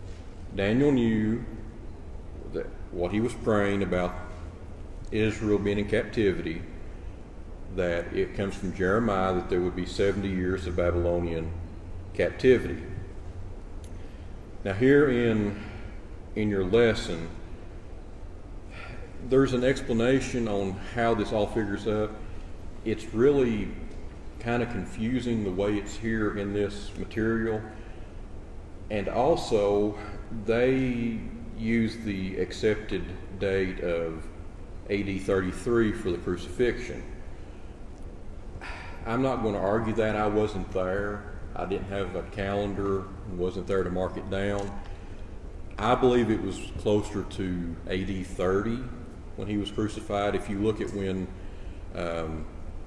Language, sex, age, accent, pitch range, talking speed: English, male, 40-59, American, 90-105 Hz, 120 wpm